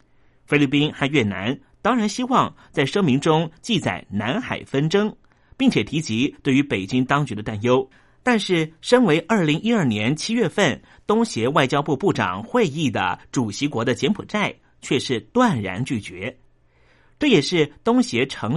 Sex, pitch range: male, 120-190 Hz